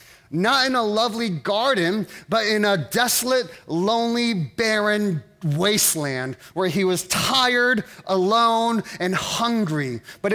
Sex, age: male, 30-49